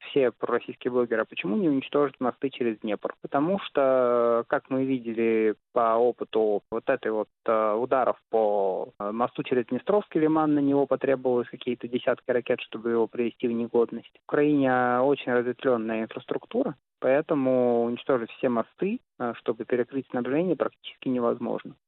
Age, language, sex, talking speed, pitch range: 20-39, Russian, male, 145 wpm, 110-130 Hz